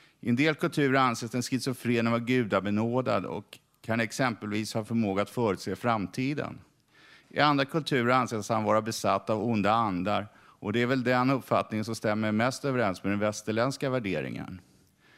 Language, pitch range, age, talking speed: Swedish, 110-130 Hz, 50-69, 160 wpm